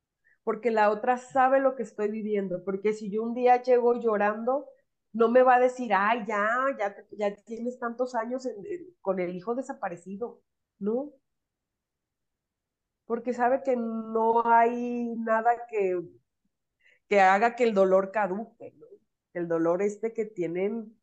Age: 30-49